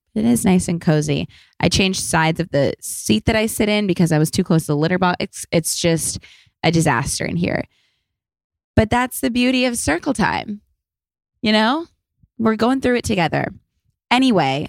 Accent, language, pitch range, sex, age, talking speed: American, English, 160-215 Hz, female, 20-39, 190 wpm